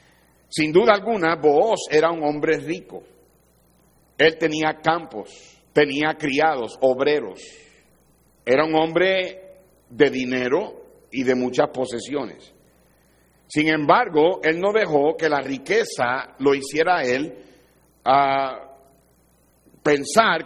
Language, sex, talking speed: Spanish, male, 105 wpm